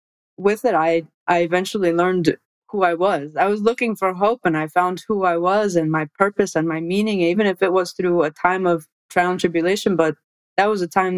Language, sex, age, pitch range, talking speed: English, female, 20-39, 170-200 Hz, 225 wpm